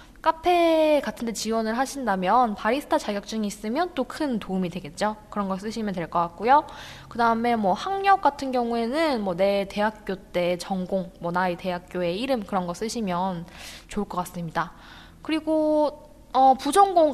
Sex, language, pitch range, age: female, Korean, 190-260 Hz, 10-29